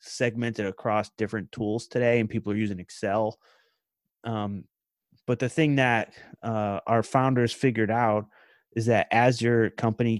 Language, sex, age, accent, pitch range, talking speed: English, male, 30-49, American, 105-125 Hz, 145 wpm